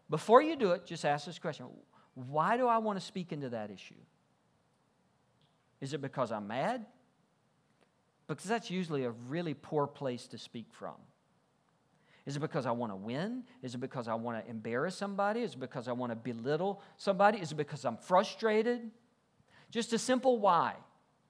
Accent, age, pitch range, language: American, 50-69, 145-225 Hz, English